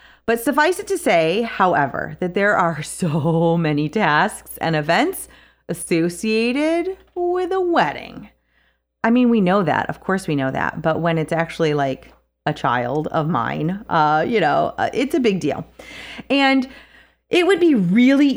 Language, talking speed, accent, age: English, 160 wpm, American, 30-49